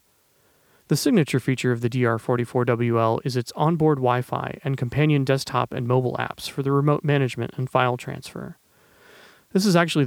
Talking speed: 155 wpm